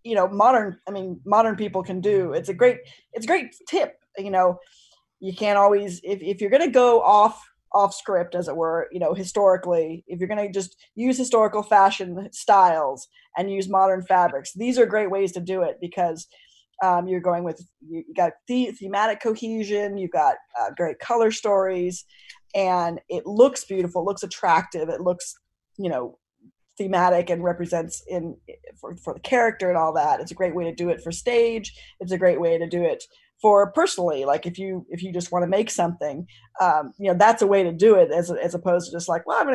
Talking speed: 210 wpm